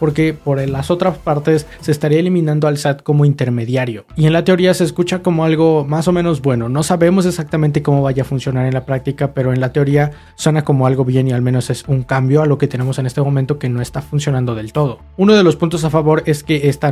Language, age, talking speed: Spanish, 20-39, 250 wpm